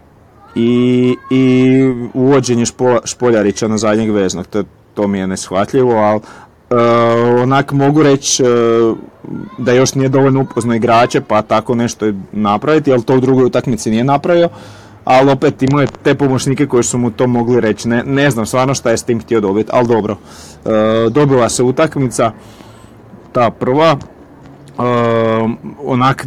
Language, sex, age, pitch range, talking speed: Croatian, male, 30-49, 105-130 Hz, 160 wpm